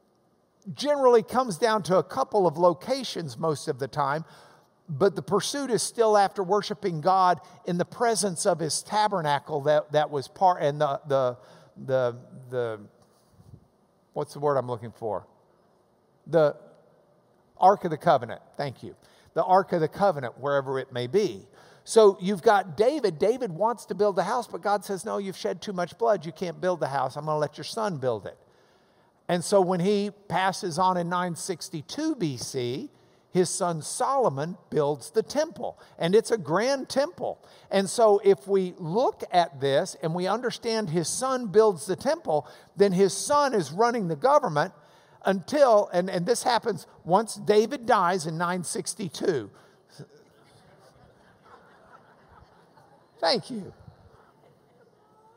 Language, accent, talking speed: English, American, 155 wpm